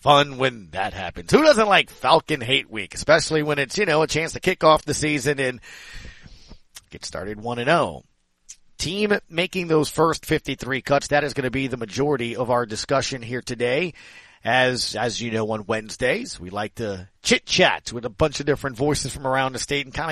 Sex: male